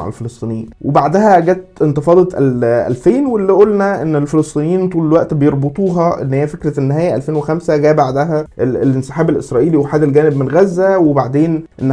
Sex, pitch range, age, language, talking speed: male, 140-180 Hz, 20-39, Arabic, 140 wpm